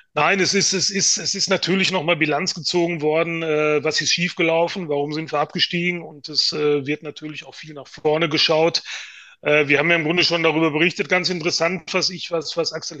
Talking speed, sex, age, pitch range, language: 205 wpm, male, 30-49, 155-175 Hz, German